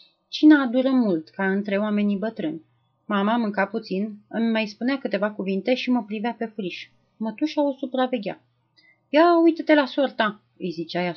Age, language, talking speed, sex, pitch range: 30-49, Romanian, 160 wpm, female, 185-235 Hz